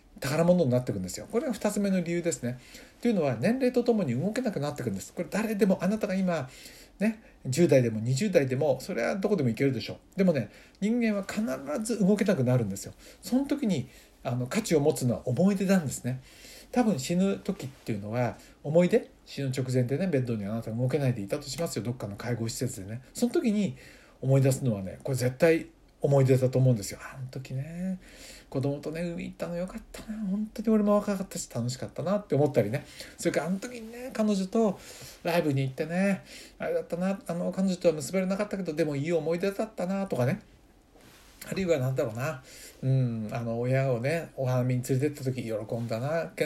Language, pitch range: Japanese, 125-195 Hz